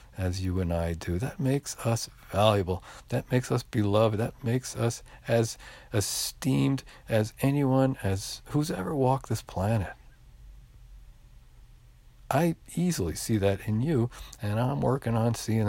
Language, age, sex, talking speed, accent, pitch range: English, 50-69, male, 140 wpm, American, 95-125 Hz